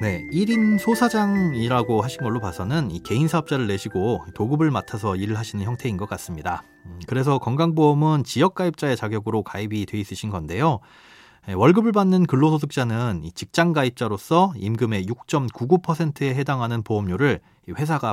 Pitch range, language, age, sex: 110-165 Hz, Korean, 30-49, male